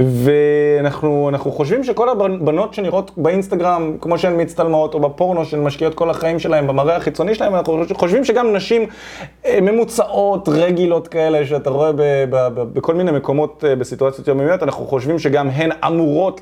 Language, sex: Hebrew, male